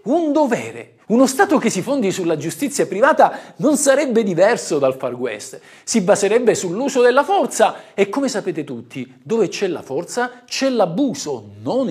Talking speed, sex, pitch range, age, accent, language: 160 wpm, male, 175-285 Hz, 50-69, native, Italian